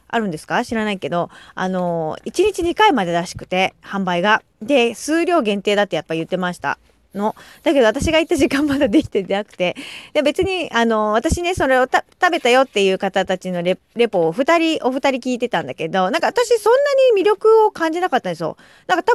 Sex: female